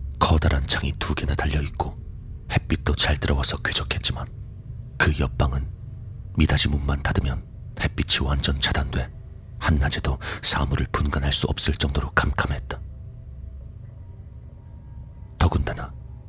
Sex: male